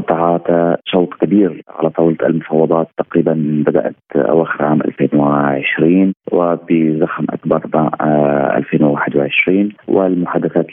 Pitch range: 80-95 Hz